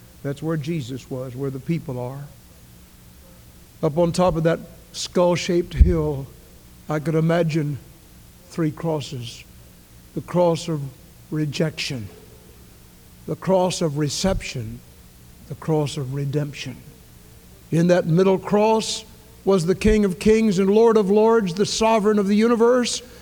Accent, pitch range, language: American, 150-220 Hz, English